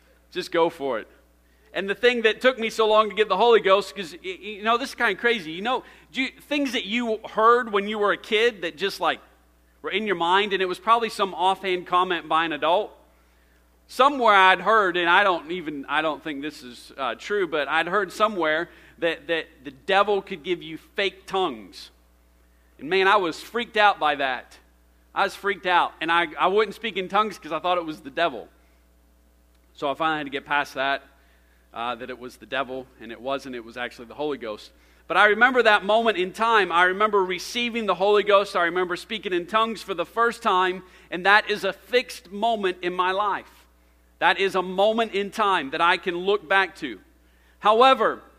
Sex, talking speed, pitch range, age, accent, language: male, 215 wpm, 145-215 Hz, 40-59, American, English